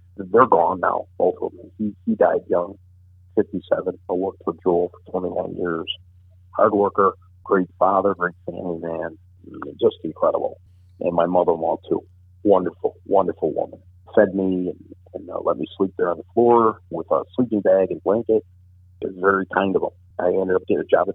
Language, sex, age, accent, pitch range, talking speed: English, male, 50-69, American, 90-100 Hz, 185 wpm